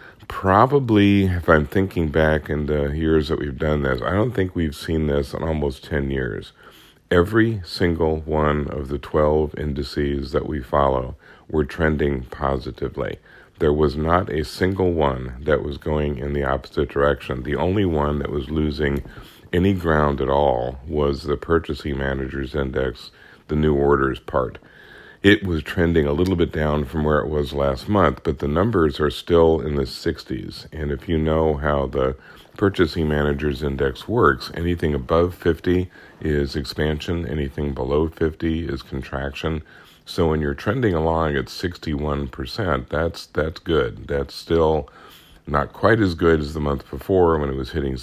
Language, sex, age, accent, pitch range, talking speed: English, male, 50-69, American, 70-80 Hz, 165 wpm